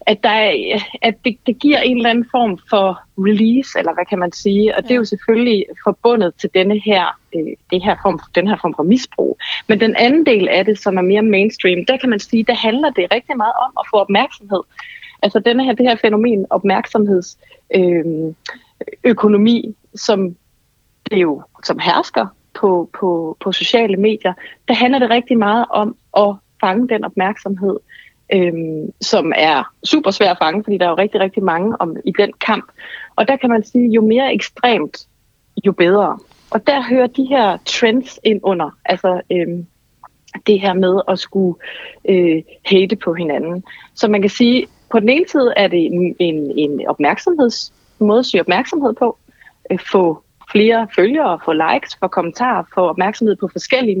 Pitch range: 185-235 Hz